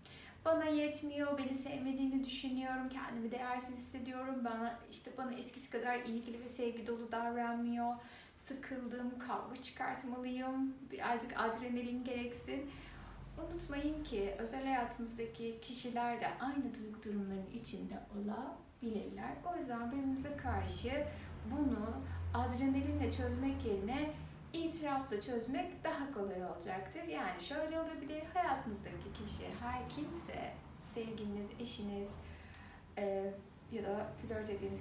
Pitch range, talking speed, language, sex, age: 225-295 Hz, 105 wpm, Turkish, female, 60-79